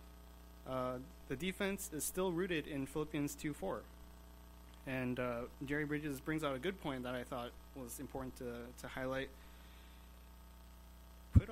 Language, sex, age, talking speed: English, male, 20-39, 140 wpm